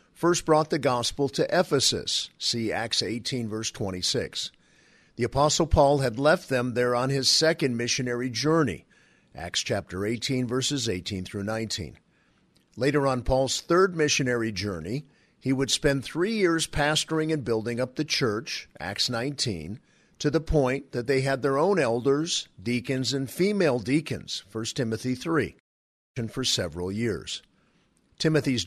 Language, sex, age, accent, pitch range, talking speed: English, male, 50-69, American, 115-150 Hz, 145 wpm